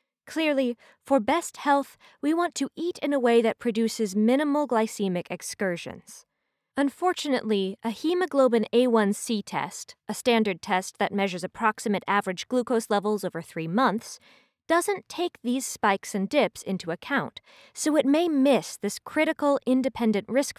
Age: 20-39